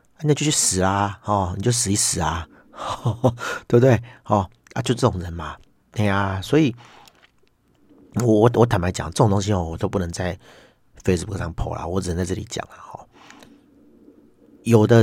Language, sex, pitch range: Chinese, male, 90-110 Hz